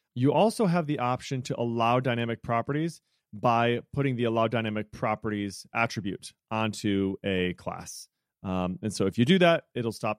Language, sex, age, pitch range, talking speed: English, male, 30-49, 105-135 Hz, 165 wpm